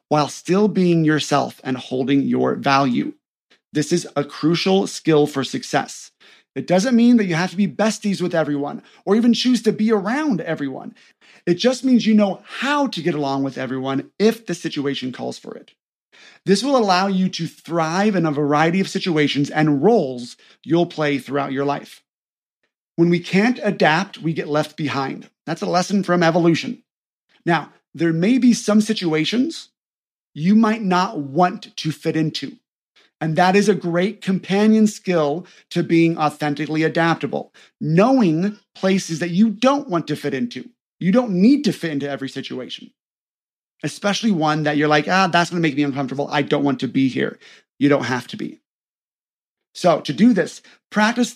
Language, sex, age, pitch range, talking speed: English, male, 30-49, 150-205 Hz, 175 wpm